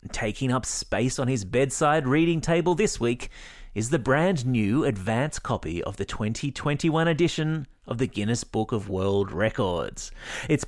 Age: 30-49